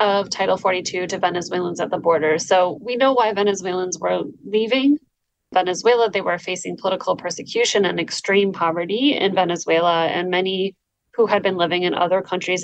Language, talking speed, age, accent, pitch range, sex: English, 165 wpm, 30-49, American, 175-210 Hz, female